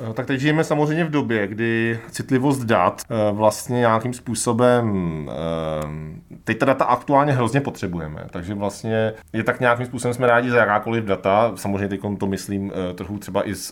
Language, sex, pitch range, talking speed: Czech, male, 95-115 Hz, 160 wpm